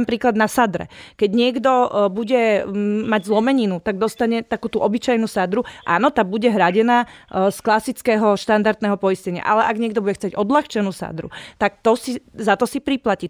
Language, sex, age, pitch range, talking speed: Slovak, female, 30-49, 210-240 Hz, 165 wpm